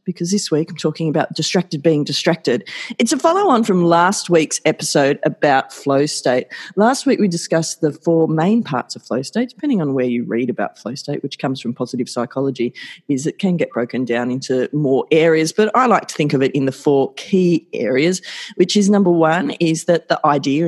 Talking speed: 210 wpm